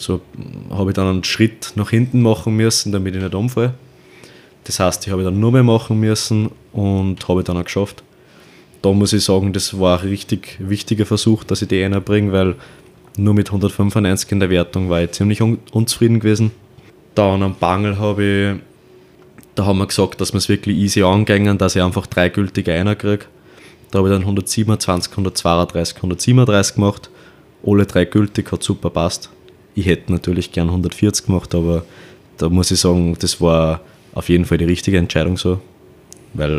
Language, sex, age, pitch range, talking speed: German, male, 20-39, 85-100 Hz, 180 wpm